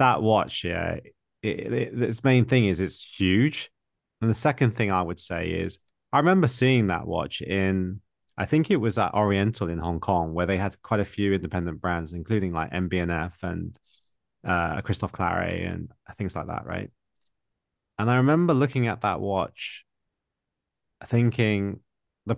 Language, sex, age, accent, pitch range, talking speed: English, male, 20-39, British, 90-120 Hz, 170 wpm